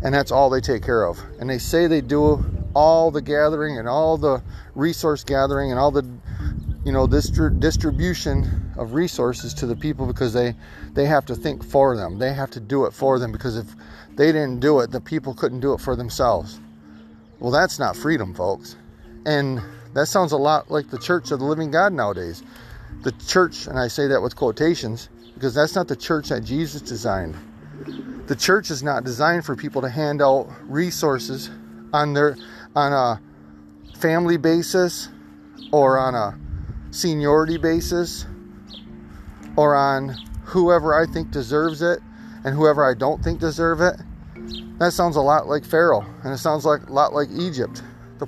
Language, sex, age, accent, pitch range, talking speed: English, male, 40-59, American, 115-155 Hz, 180 wpm